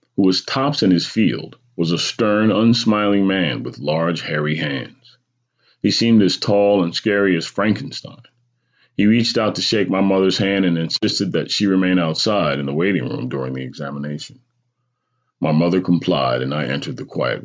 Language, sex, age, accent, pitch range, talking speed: English, male, 40-59, American, 85-115 Hz, 175 wpm